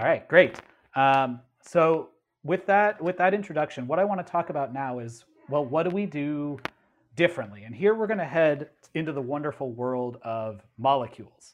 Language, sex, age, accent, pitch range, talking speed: English, male, 30-49, American, 125-160 Hz, 185 wpm